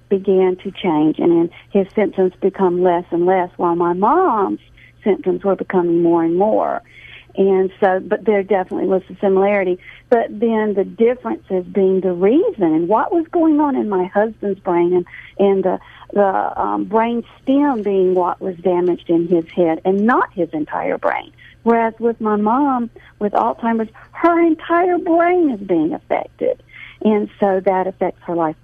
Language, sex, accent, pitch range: English, female, American, 180-220 Hz